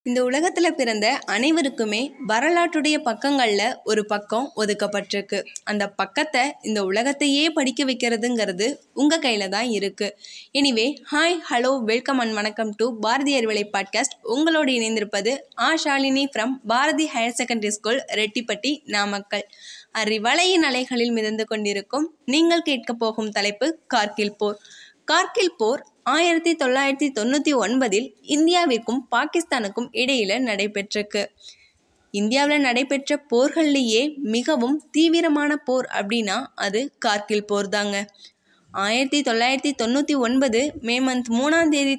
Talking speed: 110 wpm